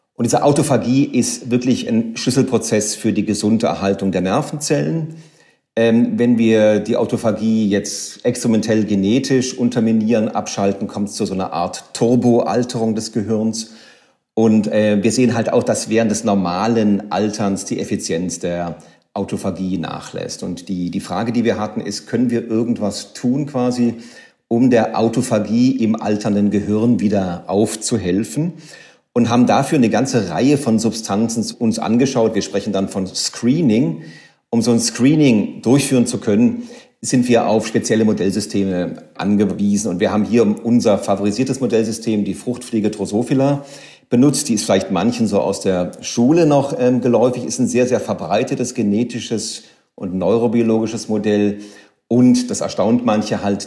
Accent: German